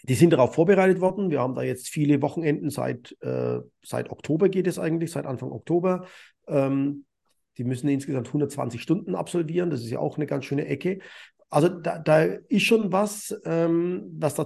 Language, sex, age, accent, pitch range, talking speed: German, male, 50-69, German, 135-180 Hz, 185 wpm